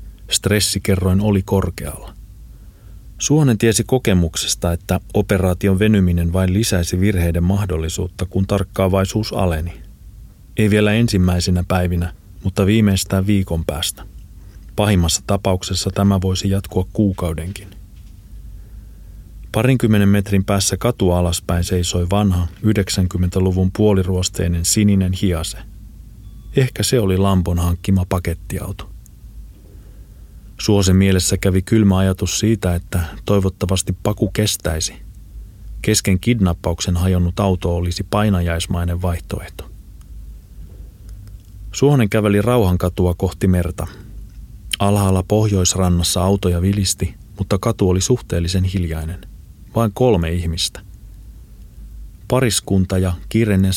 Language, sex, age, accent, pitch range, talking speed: Finnish, male, 30-49, native, 90-100 Hz, 95 wpm